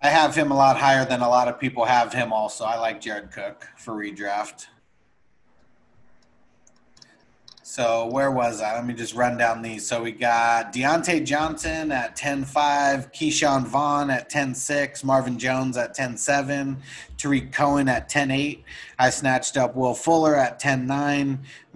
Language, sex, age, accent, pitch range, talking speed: English, male, 30-49, American, 120-145 Hz, 155 wpm